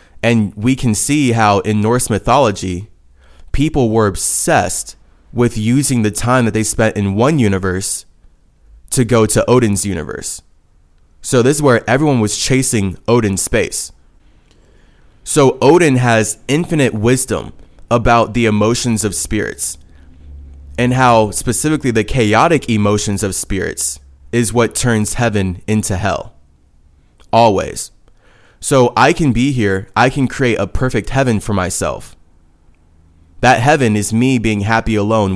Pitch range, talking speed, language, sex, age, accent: 95-120 Hz, 135 wpm, English, male, 20-39, American